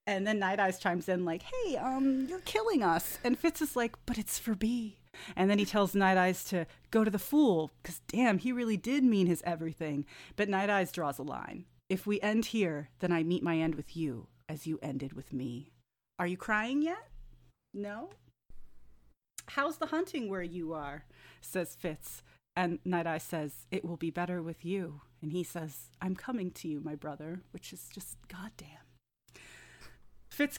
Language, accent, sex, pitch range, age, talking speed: English, American, female, 155-205 Hz, 30-49, 190 wpm